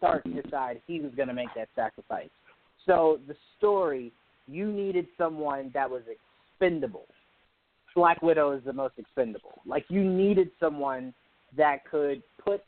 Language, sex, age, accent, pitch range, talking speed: English, male, 20-39, American, 135-175 Hz, 145 wpm